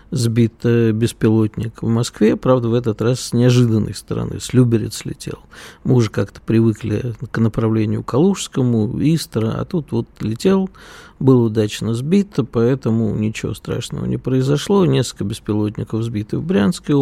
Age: 50-69